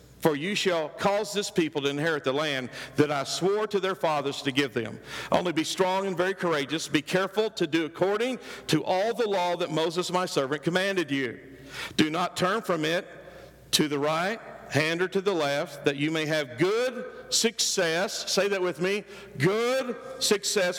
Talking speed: 190 wpm